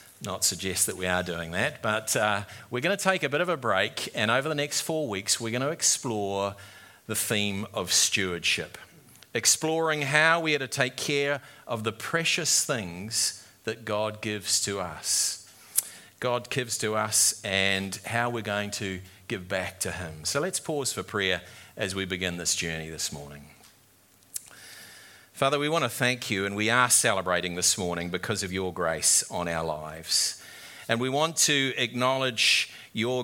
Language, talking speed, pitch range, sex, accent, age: English, 175 wpm, 95-135 Hz, male, Australian, 40-59